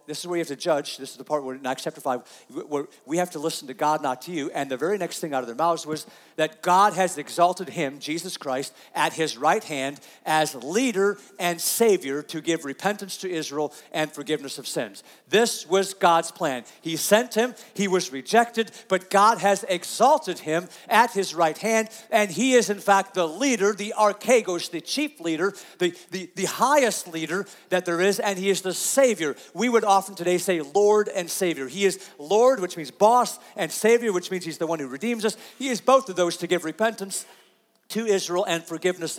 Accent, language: American, English